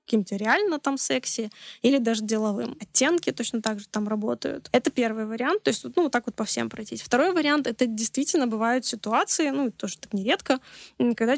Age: 20-39